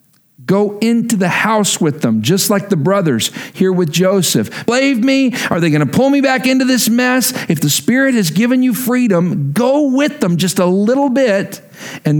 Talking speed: 195 wpm